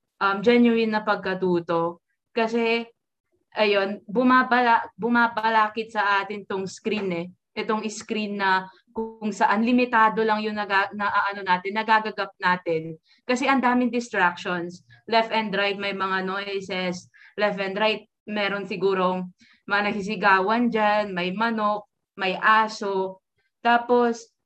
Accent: native